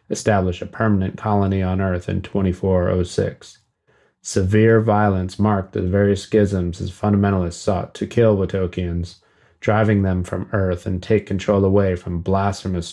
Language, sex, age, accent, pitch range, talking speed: English, male, 30-49, American, 95-110 Hz, 140 wpm